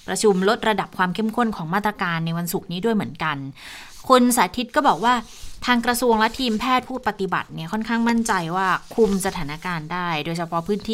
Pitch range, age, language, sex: 170-215 Hz, 20-39, Thai, female